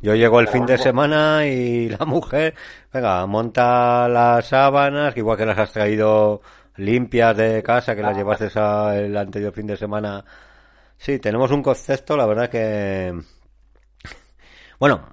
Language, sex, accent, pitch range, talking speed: Spanish, male, Spanish, 90-115 Hz, 155 wpm